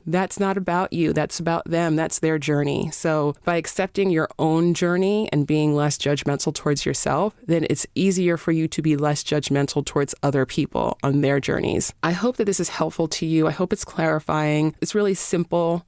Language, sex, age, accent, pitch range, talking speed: English, female, 30-49, American, 145-175 Hz, 195 wpm